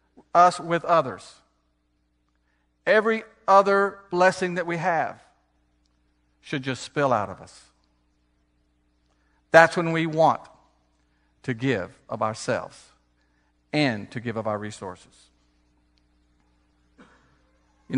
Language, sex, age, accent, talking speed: English, male, 50-69, American, 100 wpm